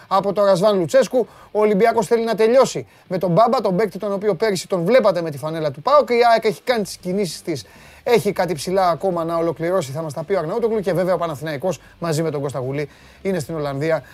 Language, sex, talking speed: Greek, male, 220 wpm